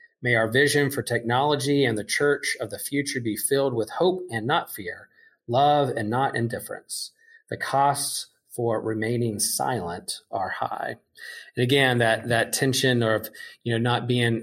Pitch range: 110-130 Hz